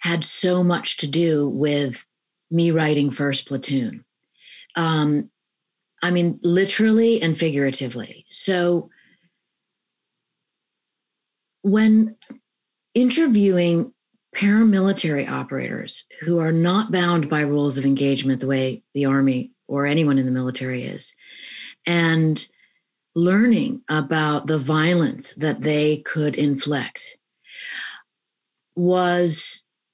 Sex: female